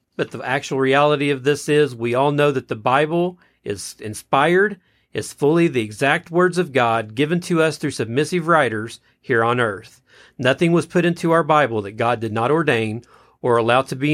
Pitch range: 120-165 Hz